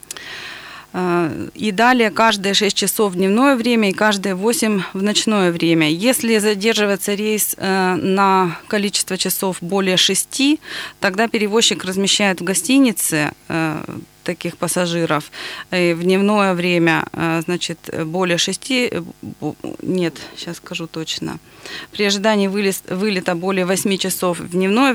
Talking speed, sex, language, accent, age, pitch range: 115 wpm, female, Russian, native, 20-39, 180-210 Hz